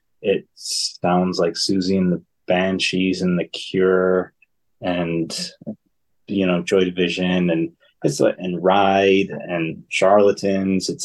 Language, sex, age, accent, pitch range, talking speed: English, male, 20-39, American, 90-105 Hz, 115 wpm